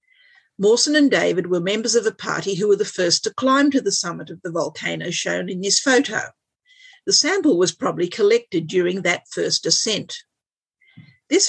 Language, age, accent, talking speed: English, 50-69, Australian, 180 wpm